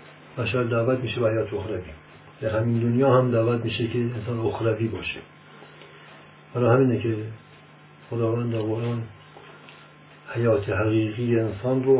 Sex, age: male, 50-69